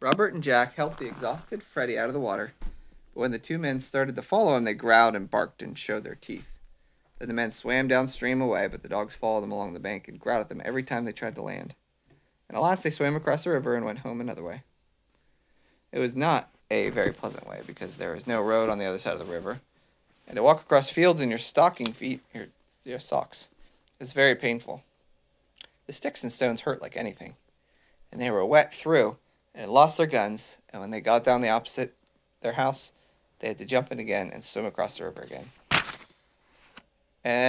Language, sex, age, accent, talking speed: English, male, 30-49, American, 220 wpm